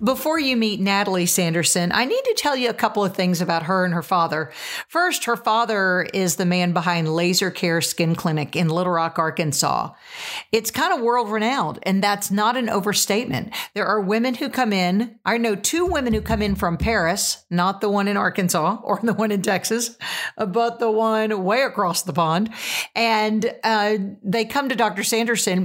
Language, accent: English, American